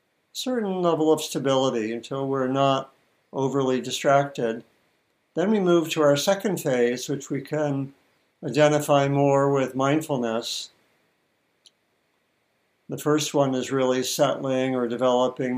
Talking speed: 120 wpm